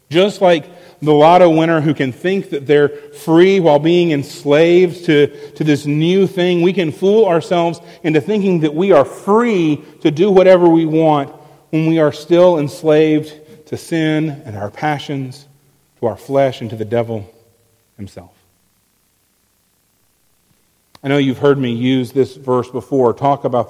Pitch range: 115-165 Hz